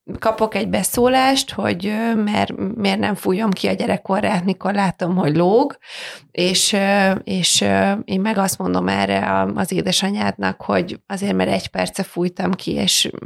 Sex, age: female, 30-49